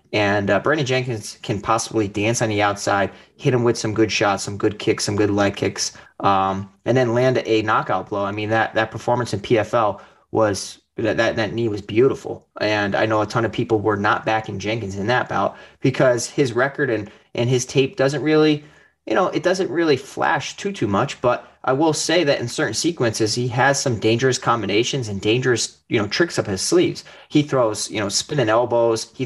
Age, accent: 30-49, American